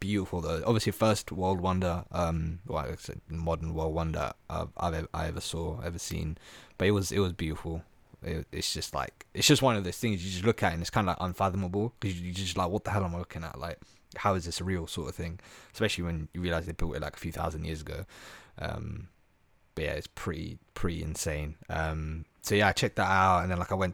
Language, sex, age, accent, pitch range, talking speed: English, male, 20-39, British, 80-100 Hz, 245 wpm